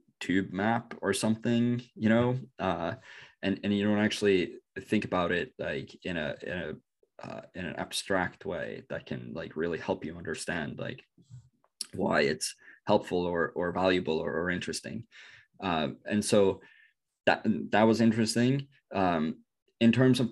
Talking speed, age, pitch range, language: 155 wpm, 20-39, 95-115 Hz, English